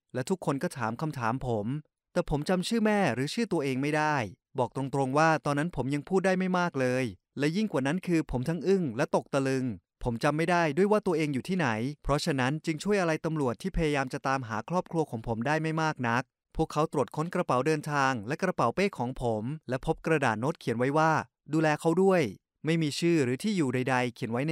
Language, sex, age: Thai, male, 20-39